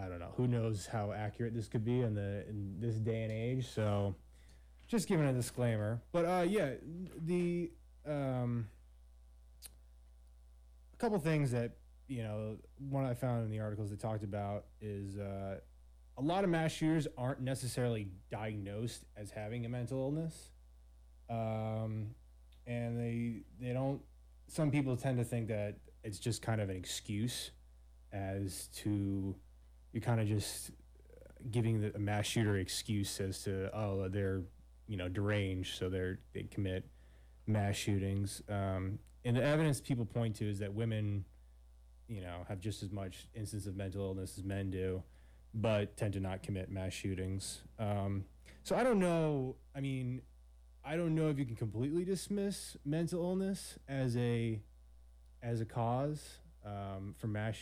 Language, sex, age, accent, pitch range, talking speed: English, male, 20-39, American, 95-120 Hz, 160 wpm